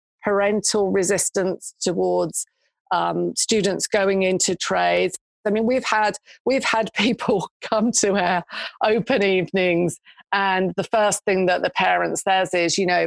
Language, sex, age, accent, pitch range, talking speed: English, female, 40-59, British, 175-210 Hz, 140 wpm